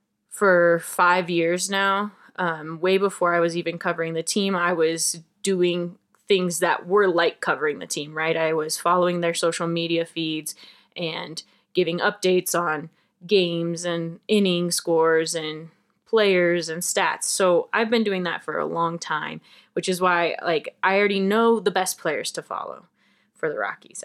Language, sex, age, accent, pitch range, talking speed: English, female, 20-39, American, 165-205 Hz, 165 wpm